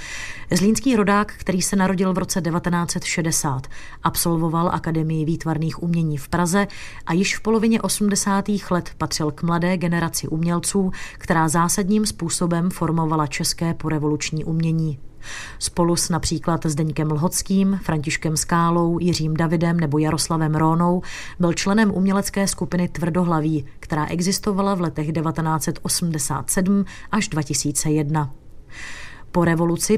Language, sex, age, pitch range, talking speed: Czech, female, 30-49, 155-180 Hz, 115 wpm